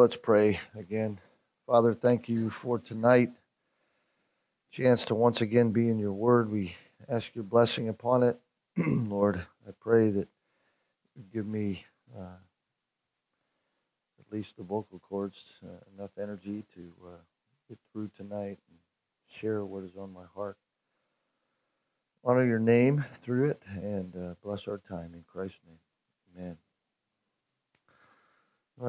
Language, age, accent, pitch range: English, 40-59, American, 105-125 Hz